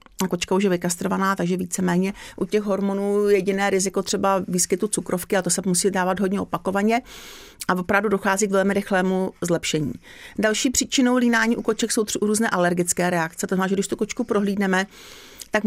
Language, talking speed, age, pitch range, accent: Czech, 170 wpm, 40-59, 185-210 Hz, native